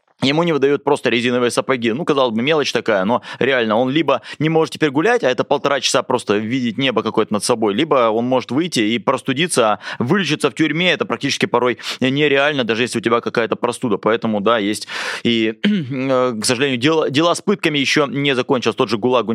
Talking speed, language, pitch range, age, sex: 200 wpm, Russian, 120-150 Hz, 20-39, male